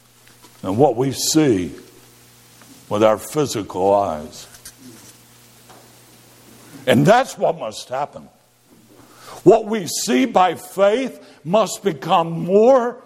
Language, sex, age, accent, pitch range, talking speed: English, male, 60-79, American, 115-180 Hz, 95 wpm